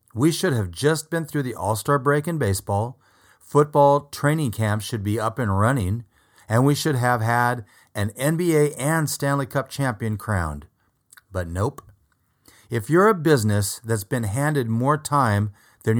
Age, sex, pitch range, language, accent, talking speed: 30-49, male, 95-130 Hz, English, American, 160 wpm